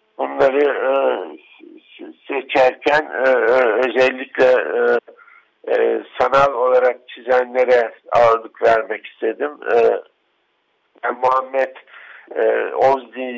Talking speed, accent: 75 wpm, native